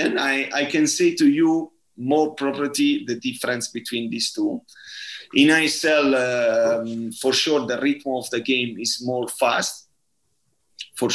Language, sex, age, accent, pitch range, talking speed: English, male, 30-49, Italian, 120-155 Hz, 150 wpm